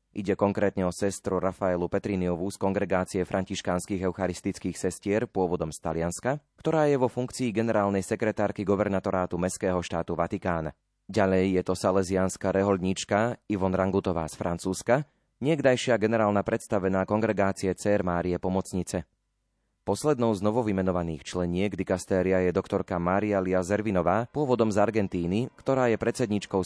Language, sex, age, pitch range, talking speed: Slovak, male, 30-49, 90-105 Hz, 125 wpm